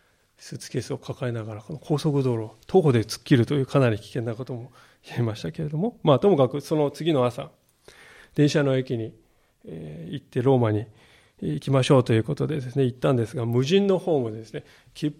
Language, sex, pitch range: Japanese, male, 125-165 Hz